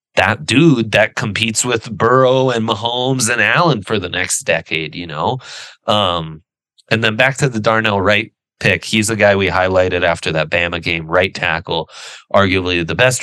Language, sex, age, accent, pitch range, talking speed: English, male, 30-49, American, 85-110 Hz, 175 wpm